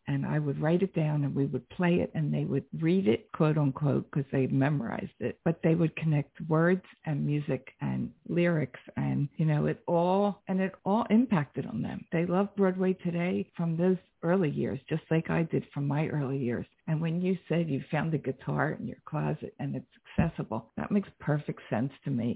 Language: English